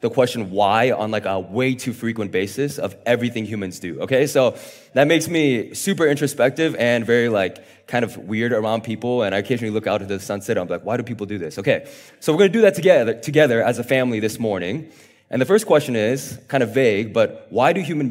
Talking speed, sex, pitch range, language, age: 235 wpm, male, 115-155 Hz, English, 20-39